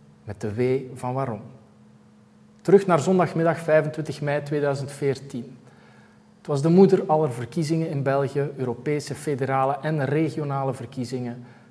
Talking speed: 125 wpm